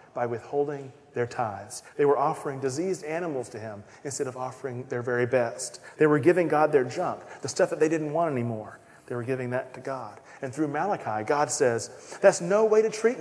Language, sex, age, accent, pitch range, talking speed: English, male, 40-59, American, 135-195 Hz, 210 wpm